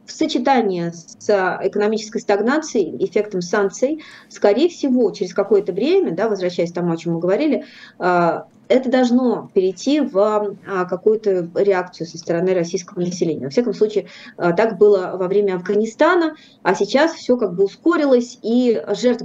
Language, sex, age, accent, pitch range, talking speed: Russian, female, 30-49, native, 180-235 Hz, 140 wpm